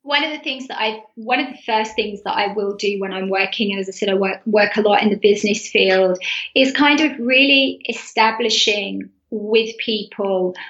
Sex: female